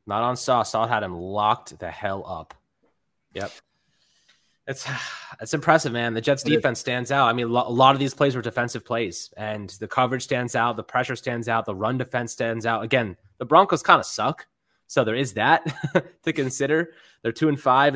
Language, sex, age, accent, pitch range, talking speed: English, male, 20-39, American, 105-135 Hz, 200 wpm